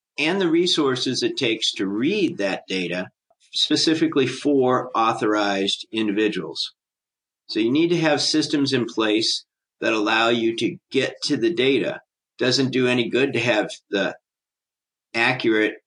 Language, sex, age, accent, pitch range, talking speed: English, male, 50-69, American, 105-130 Hz, 140 wpm